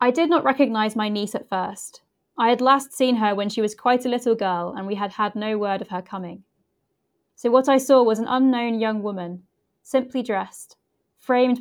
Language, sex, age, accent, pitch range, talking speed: English, female, 20-39, British, 195-235 Hz, 210 wpm